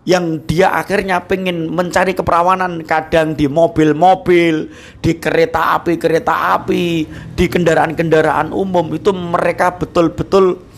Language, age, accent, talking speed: Indonesian, 50-69, native, 105 wpm